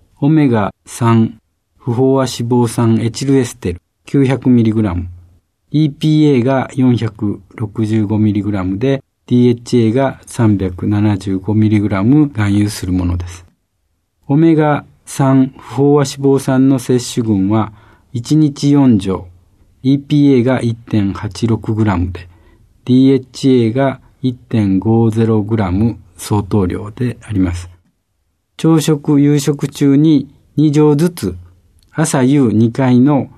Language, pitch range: Japanese, 100-140 Hz